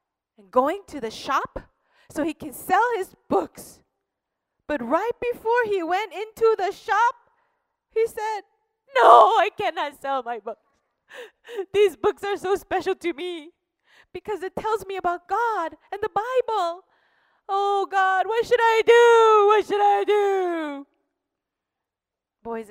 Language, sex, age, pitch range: Korean, female, 30-49, 270-420 Hz